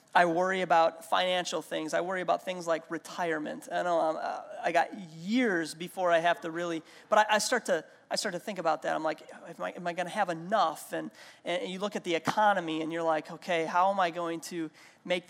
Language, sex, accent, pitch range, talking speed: English, male, American, 170-205 Hz, 230 wpm